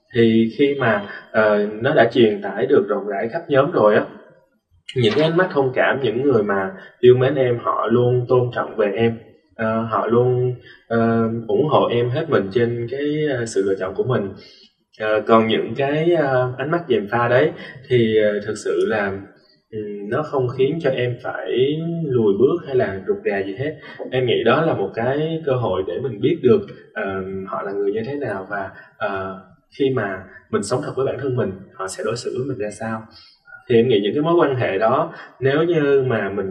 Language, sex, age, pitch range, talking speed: Vietnamese, male, 20-39, 105-140 Hz, 215 wpm